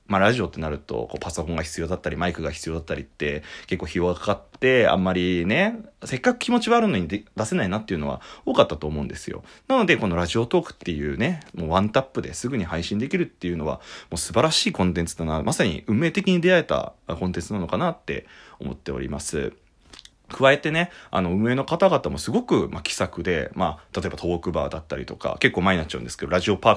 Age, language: 30-49, Japanese